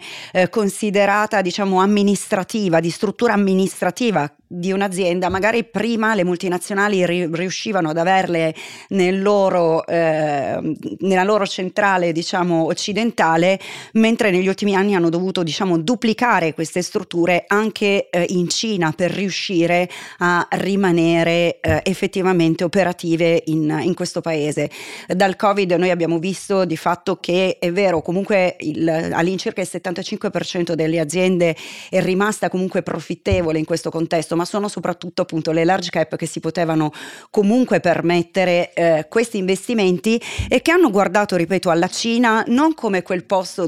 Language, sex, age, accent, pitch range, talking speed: Italian, female, 30-49, native, 170-195 Hz, 135 wpm